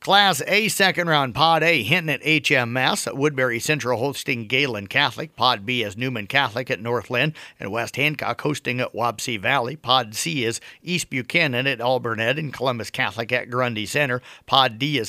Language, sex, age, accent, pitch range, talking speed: English, male, 50-69, American, 120-150 Hz, 185 wpm